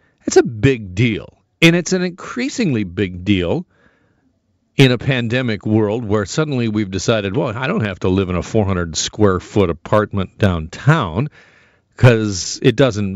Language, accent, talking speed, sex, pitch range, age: English, American, 155 wpm, male, 95-135 Hz, 50-69